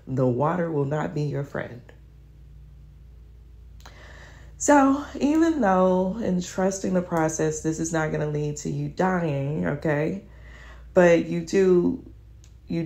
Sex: female